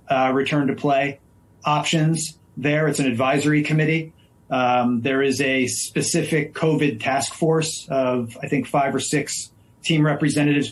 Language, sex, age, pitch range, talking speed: English, male, 40-59, 125-150 Hz, 145 wpm